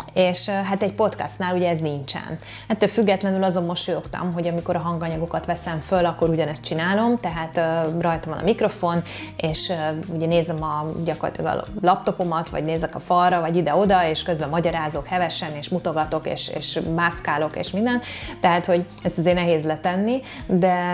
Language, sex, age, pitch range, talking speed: Hungarian, female, 20-39, 165-190 Hz, 165 wpm